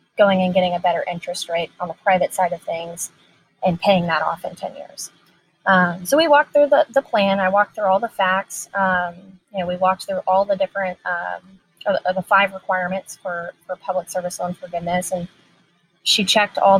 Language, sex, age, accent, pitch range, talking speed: English, female, 20-39, American, 180-200 Hz, 205 wpm